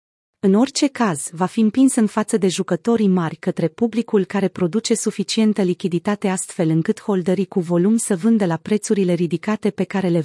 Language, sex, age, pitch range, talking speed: Romanian, female, 30-49, 180-225 Hz, 175 wpm